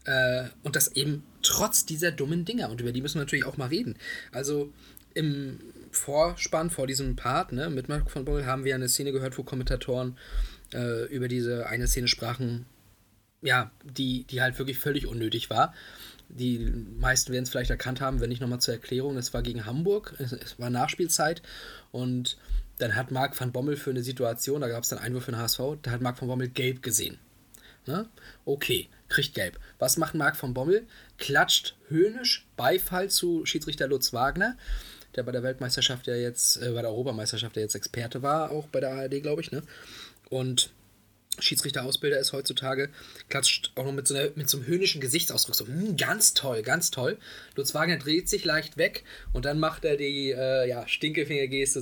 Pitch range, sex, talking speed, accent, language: 125-145 Hz, male, 190 wpm, German, German